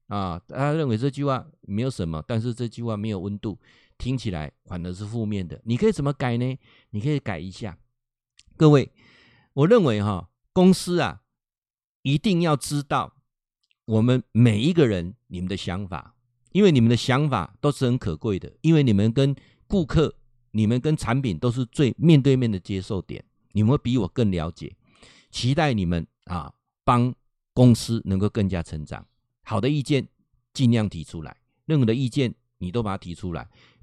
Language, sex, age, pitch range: Chinese, male, 50-69, 105-145 Hz